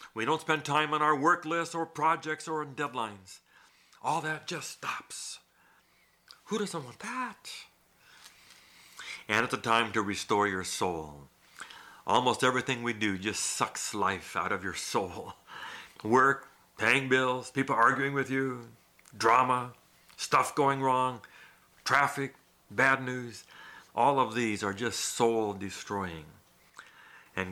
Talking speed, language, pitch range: 135 wpm, English, 105-145 Hz